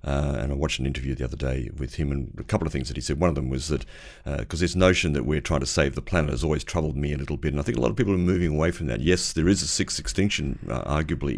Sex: male